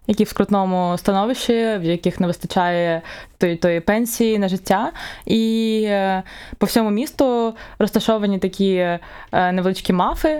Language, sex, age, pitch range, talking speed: Ukrainian, female, 20-39, 185-215 Hz, 115 wpm